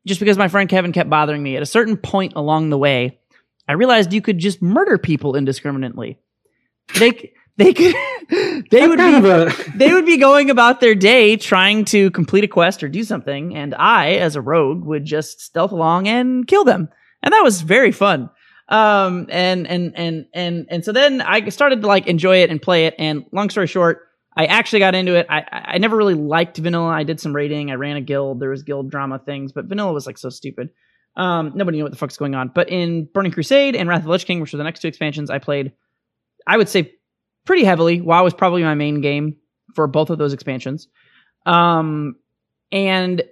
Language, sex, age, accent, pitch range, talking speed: English, male, 20-39, American, 150-200 Hz, 215 wpm